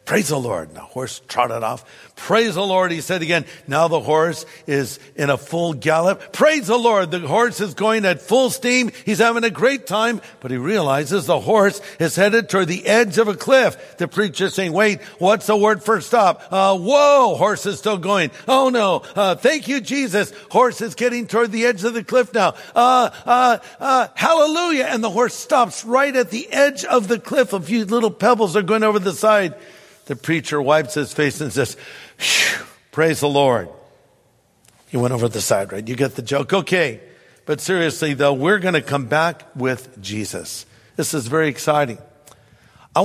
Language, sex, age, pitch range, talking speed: English, male, 60-79, 145-215 Hz, 200 wpm